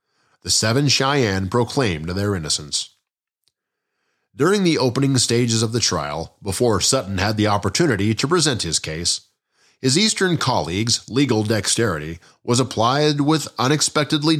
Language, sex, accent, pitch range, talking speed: English, male, American, 100-135 Hz, 130 wpm